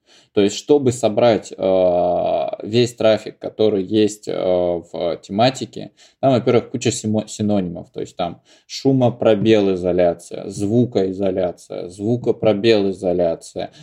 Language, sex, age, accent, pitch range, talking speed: Russian, male, 20-39, native, 95-115 Hz, 105 wpm